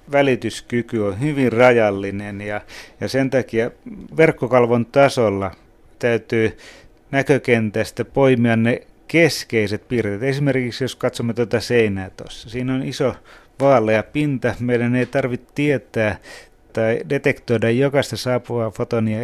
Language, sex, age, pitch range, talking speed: Finnish, male, 30-49, 110-130 Hz, 115 wpm